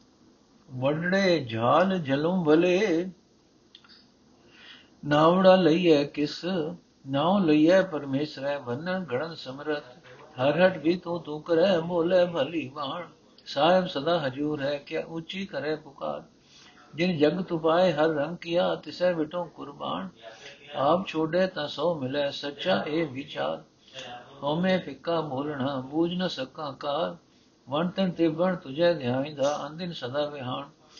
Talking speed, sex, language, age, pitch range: 120 wpm, male, Punjabi, 60-79, 140-175 Hz